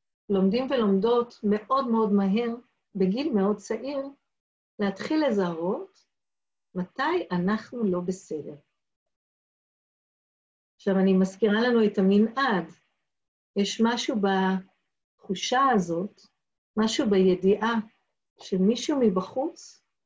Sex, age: female, 50-69